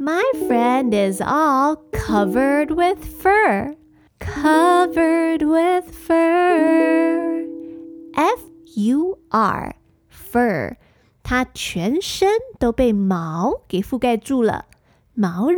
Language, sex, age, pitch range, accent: Chinese, female, 20-39, 225-330 Hz, American